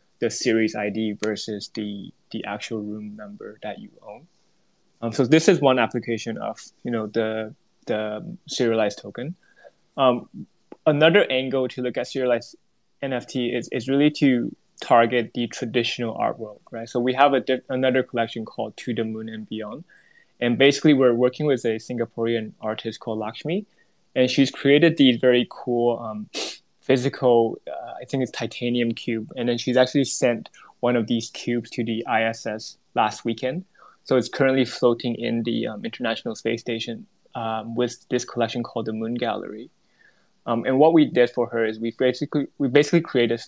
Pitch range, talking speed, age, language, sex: 115-130 Hz, 175 wpm, 20-39, English, male